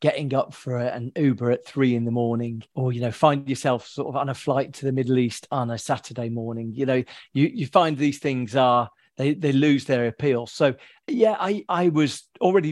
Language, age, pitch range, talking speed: English, 40-59, 130-160 Hz, 220 wpm